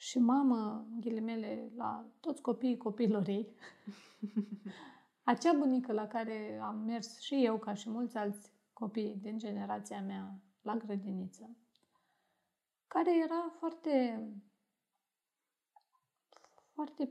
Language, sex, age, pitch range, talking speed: Romanian, female, 30-49, 215-270 Hz, 105 wpm